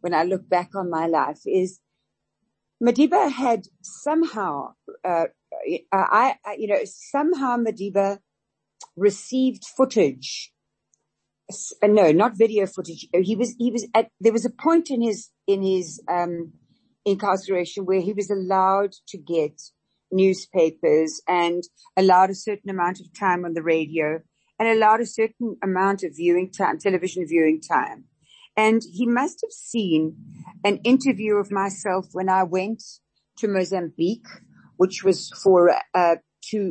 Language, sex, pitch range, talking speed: English, female, 170-210 Hz, 140 wpm